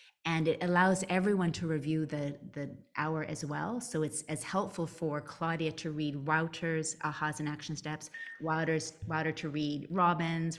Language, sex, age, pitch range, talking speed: English, female, 30-49, 155-195 Hz, 165 wpm